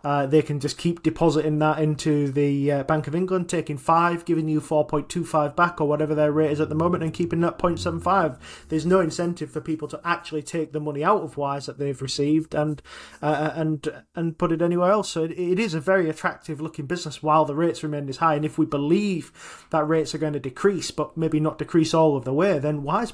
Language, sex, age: English, male, 20-39